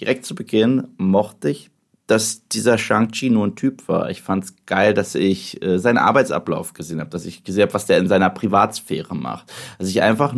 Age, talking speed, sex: 30-49, 210 wpm, male